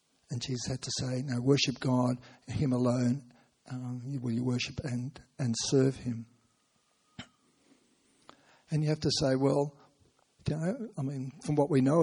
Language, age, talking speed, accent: English, 60-79, 160 wpm, Australian